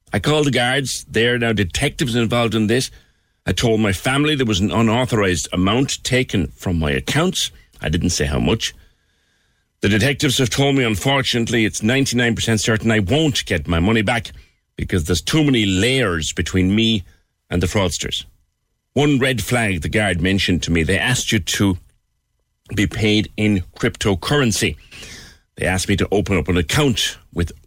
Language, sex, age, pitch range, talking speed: English, male, 60-79, 85-120 Hz, 170 wpm